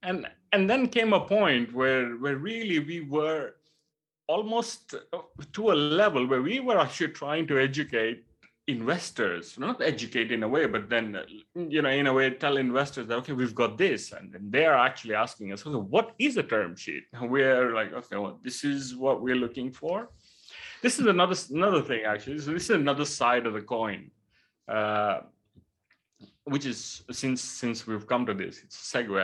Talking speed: 190 wpm